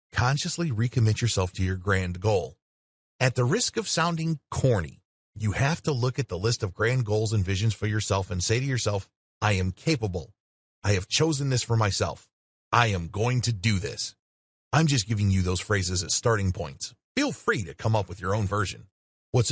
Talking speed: 200 wpm